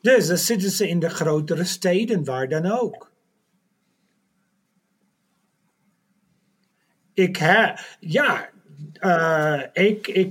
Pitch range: 160-210 Hz